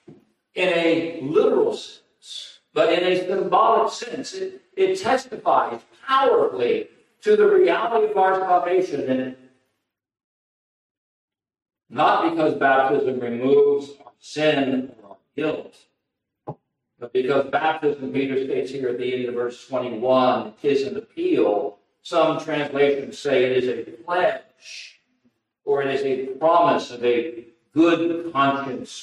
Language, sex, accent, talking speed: English, male, American, 125 wpm